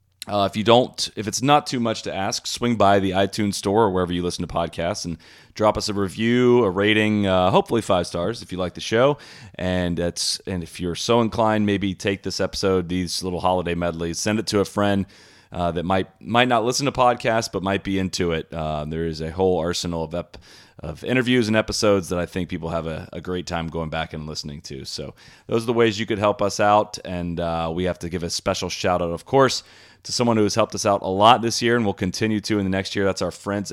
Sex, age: male, 30-49